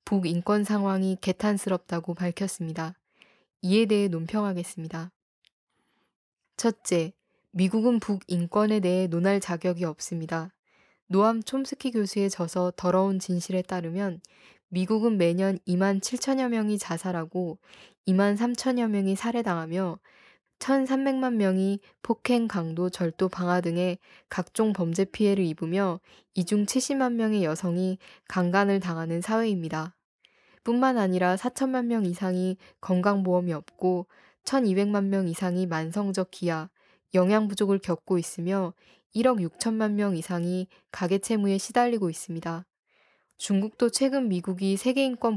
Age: 20-39